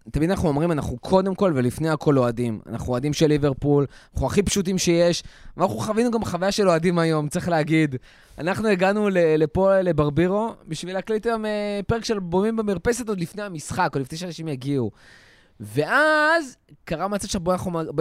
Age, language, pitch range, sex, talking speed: 20-39, Hebrew, 155-200 Hz, male, 165 wpm